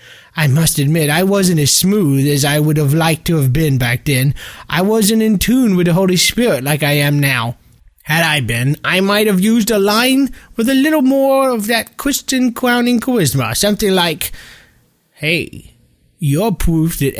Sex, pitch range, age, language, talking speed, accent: male, 130-200 Hz, 20-39, English, 185 wpm, American